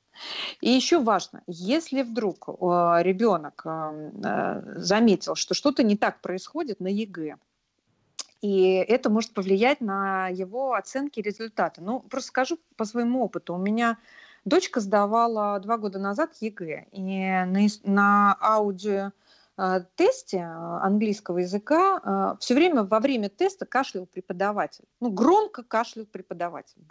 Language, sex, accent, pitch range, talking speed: Russian, female, native, 195-255 Hz, 115 wpm